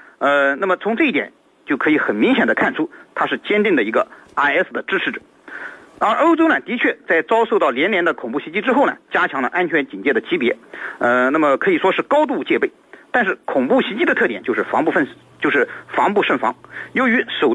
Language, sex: Chinese, male